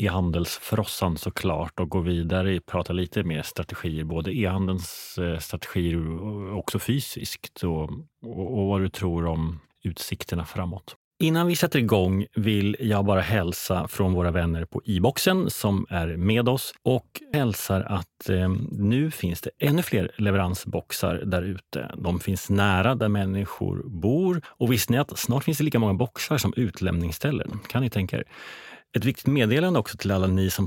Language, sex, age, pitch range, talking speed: Swedish, male, 30-49, 90-120 Hz, 165 wpm